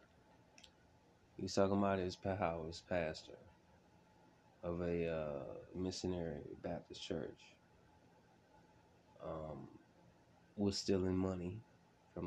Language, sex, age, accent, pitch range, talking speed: English, male, 20-39, American, 85-100 Hz, 85 wpm